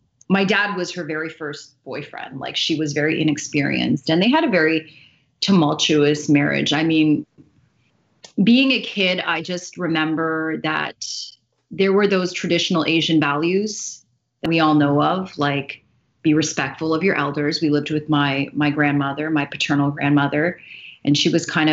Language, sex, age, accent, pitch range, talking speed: English, female, 30-49, American, 150-175 Hz, 160 wpm